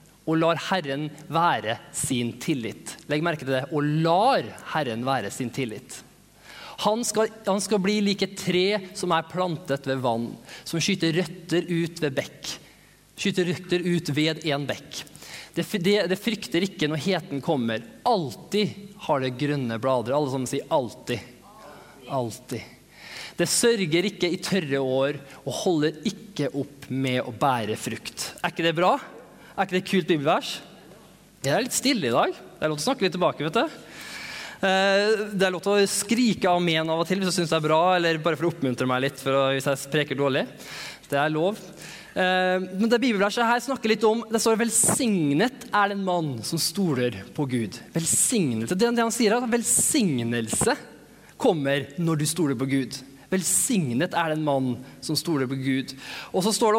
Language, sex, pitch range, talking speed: English, male, 140-190 Hz, 180 wpm